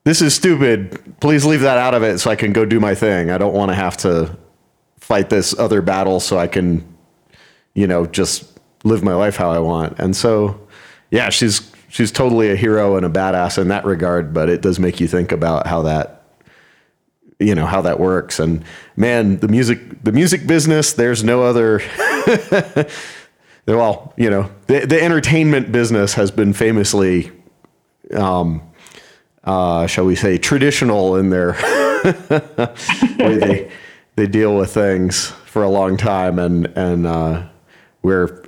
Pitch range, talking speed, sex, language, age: 90-115 Hz, 170 wpm, male, English, 40-59